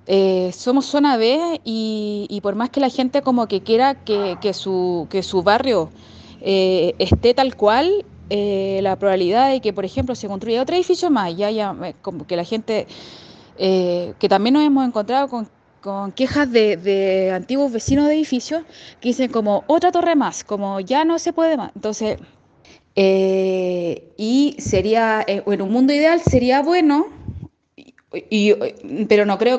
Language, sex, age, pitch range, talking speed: Spanish, female, 20-39, 210-285 Hz, 165 wpm